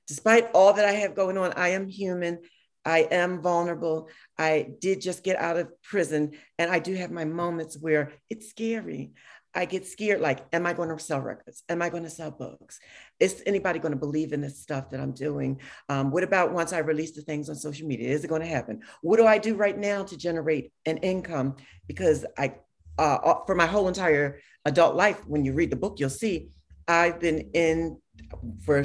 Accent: American